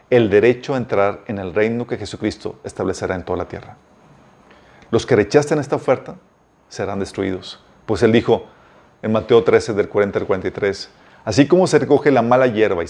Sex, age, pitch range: male, 40-59, 100-135 Hz